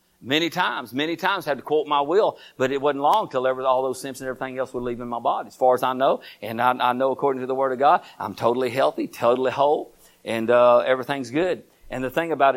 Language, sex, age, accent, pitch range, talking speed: English, male, 50-69, American, 125-160 Hz, 260 wpm